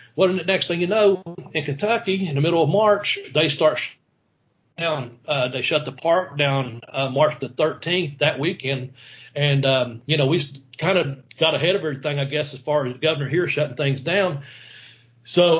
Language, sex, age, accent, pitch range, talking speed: English, male, 40-59, American, 140-175 Hz, 195 wpm